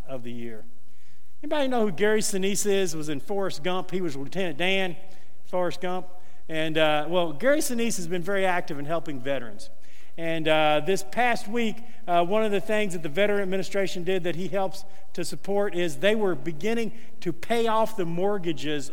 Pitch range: 150-190 Hz